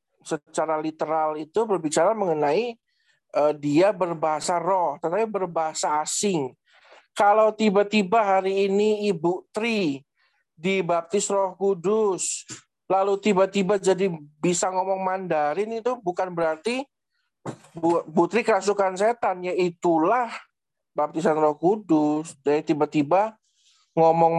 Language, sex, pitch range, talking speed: Indonesian, male, 160-220 Hz, 105 wpm